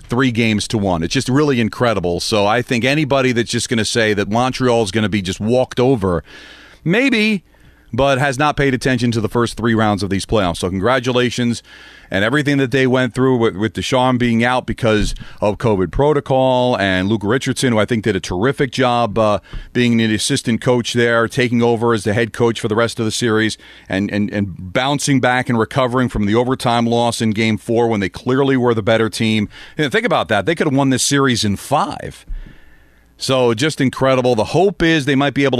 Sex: male